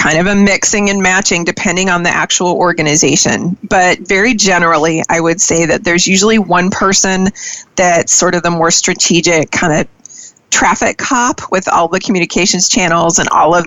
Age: 30-49